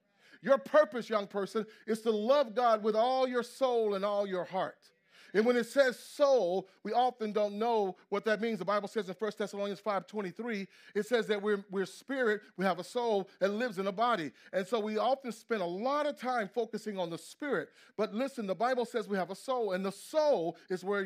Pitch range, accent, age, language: 190-250 Hz, American, 30-49, English